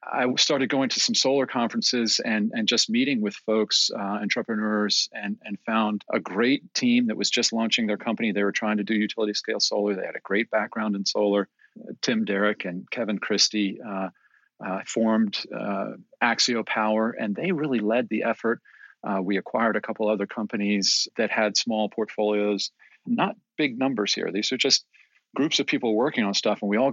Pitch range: 100-125 Hz